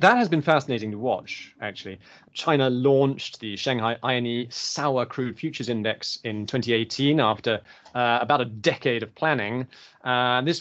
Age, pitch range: 30-49, 110-135 Hz